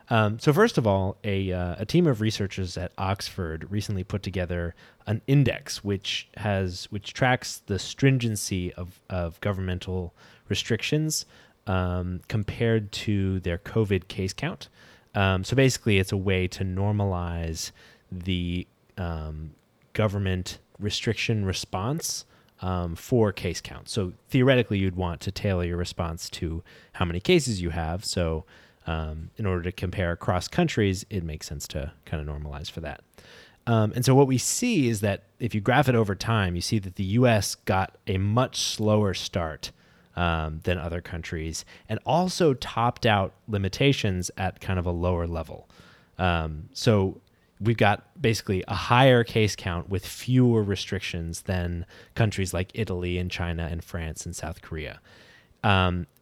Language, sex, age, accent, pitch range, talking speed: English, male, 30-49, American, 90-110 Hz, 155 wpm